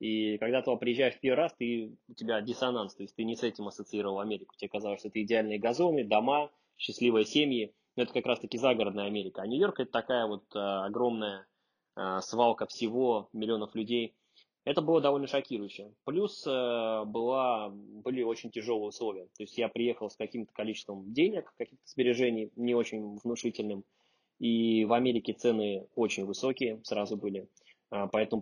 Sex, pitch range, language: male, 105-120 Hz, Swedish